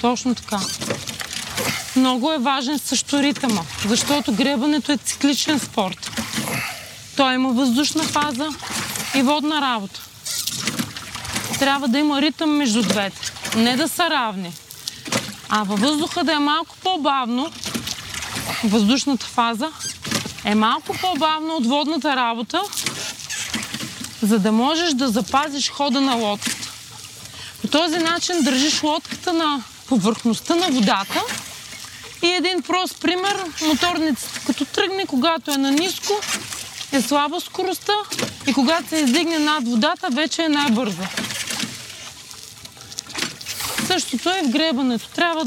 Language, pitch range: Bulgarian, 240-330 Hz